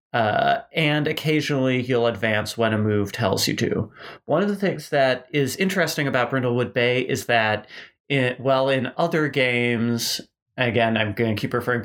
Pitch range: 115-140 Hz